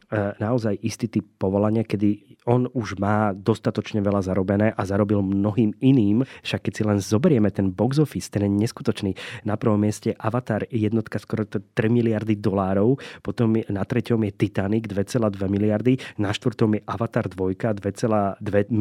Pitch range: 100-115 Hz